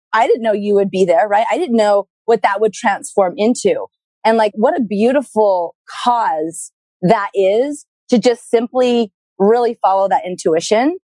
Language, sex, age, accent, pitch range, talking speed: English, female, 30-49, American, 180-235 Hz, 165 wpm